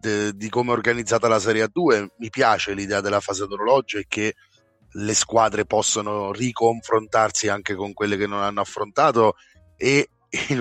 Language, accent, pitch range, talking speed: Italian, native, 105-115 Hz, 165 wpm